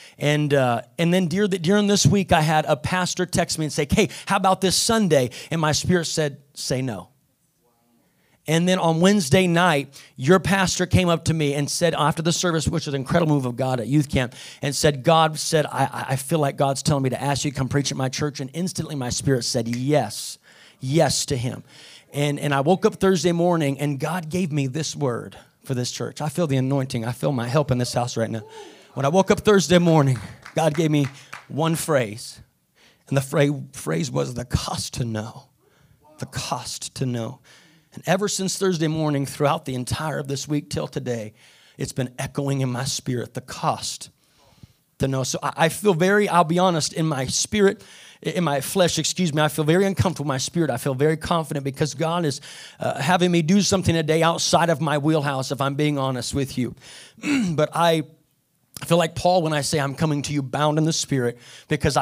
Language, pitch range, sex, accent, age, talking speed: English, 135-170 Hz, male, American, 30-49, 215 wpm